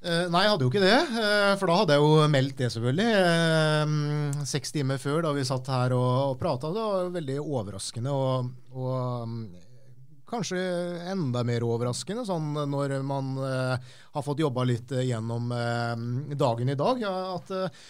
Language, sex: English, male